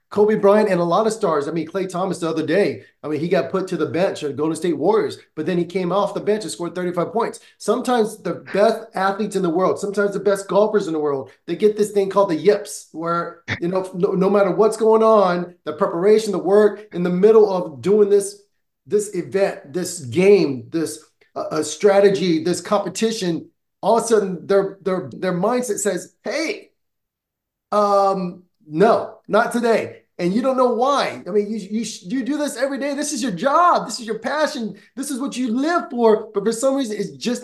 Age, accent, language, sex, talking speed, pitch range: 30-49, American, English, male, 215 wpm, 185-220 Hz